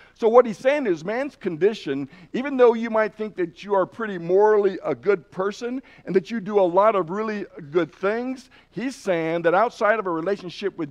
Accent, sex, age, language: American, male, 60-79, English